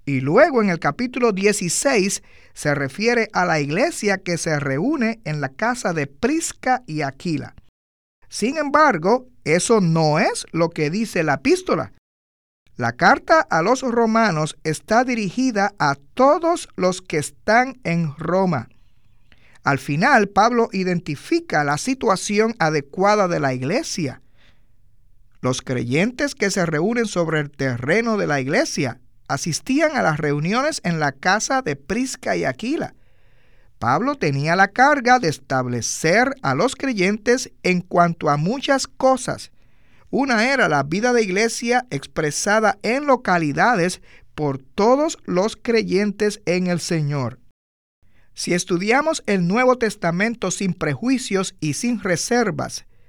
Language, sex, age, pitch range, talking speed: Spanish, male, 50-69, 145-230 Hz, 130 wpm